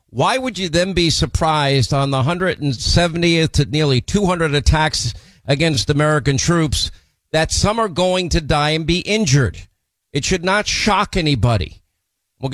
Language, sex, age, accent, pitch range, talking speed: English, male, 50-69, American, 115-150 Hz, 165 wpm